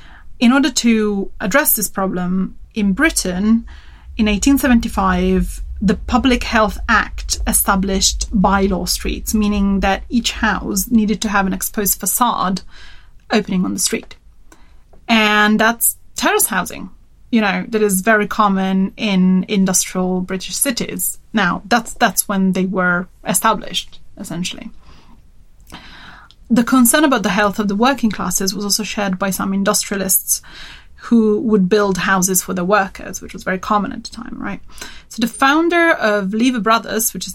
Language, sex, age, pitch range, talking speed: English, female, 30-49, 190-230 Hz, 145 wpm